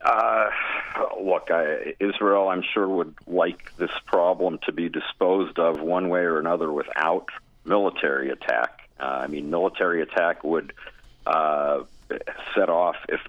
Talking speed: 140 wpm